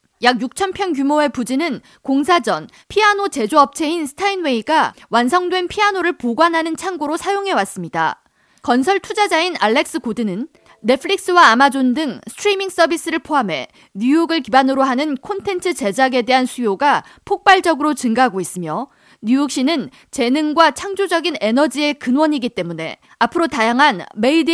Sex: female